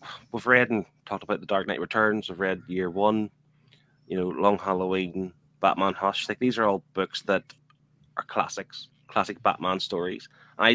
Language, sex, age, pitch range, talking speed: English, male, 20-39, 90-110 Hz, 180 wpm